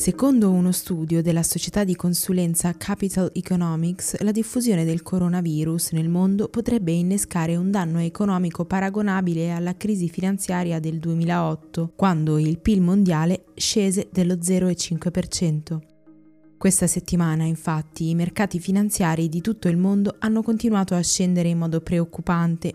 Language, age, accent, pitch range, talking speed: Italian, 20-39, native, 165-190 Hz, 130 wpm